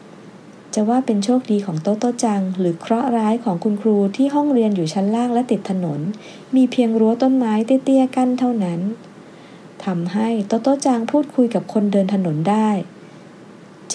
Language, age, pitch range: Japanese, 20-39, 185-235 Hz